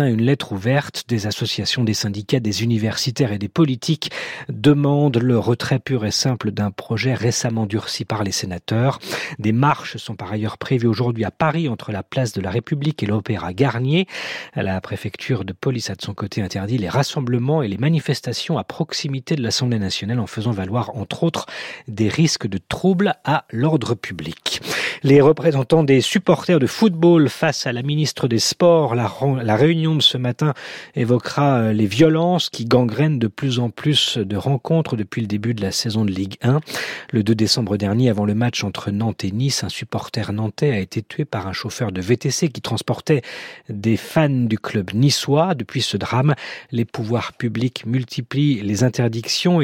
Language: French